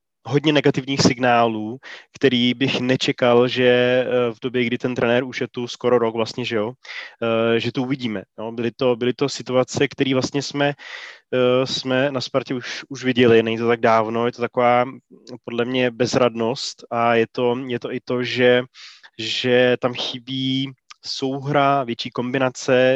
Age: 20-39